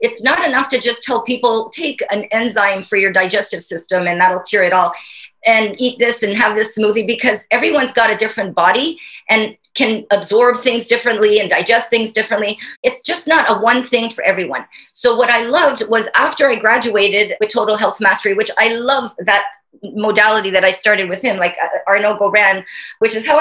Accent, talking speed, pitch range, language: American, 195 wpm, 200-240 Hz, English